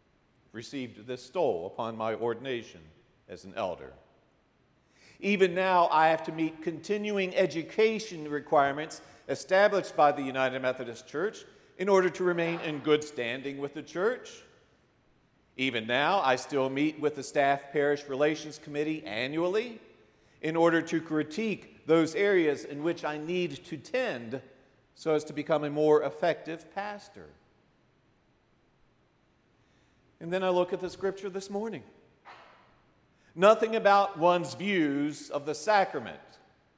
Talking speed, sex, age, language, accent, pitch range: 135 wpm, male, 50-69, English, American, 145-195 Hz